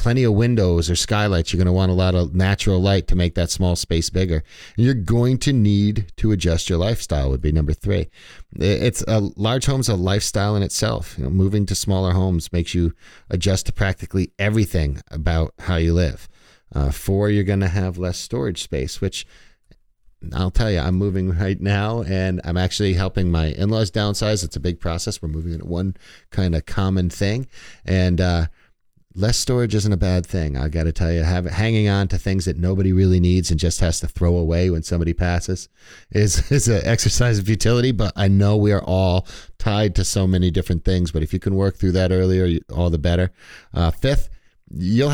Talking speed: 205 wpm